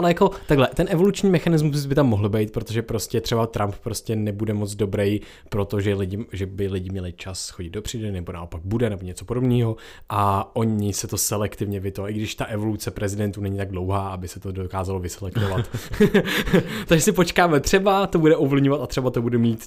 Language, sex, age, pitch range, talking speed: Czech, male, 20-39, 100-125 Hz, 200 wpm